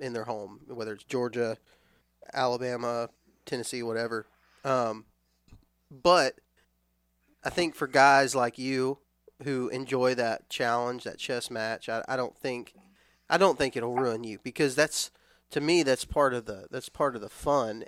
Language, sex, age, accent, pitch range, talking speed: English, male, 20-39, American, 110-145 Hz, 160 wpm